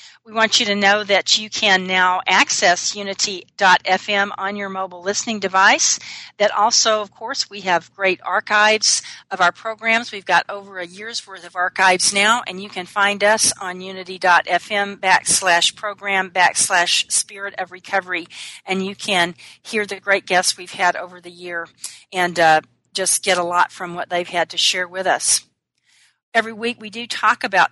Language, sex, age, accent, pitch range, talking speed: English, female, 40-59, American, 180-210 Hz, 175 wpm